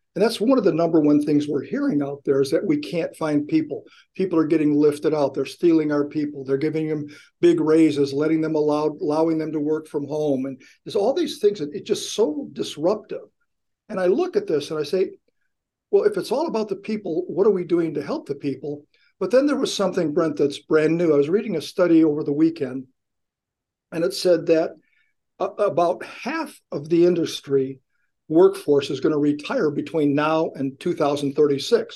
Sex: male